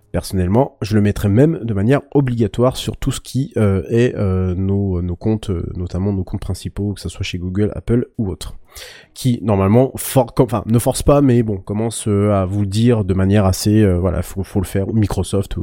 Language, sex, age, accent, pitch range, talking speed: French, male, 30-49, French, 100-130 Hz, 205 wpm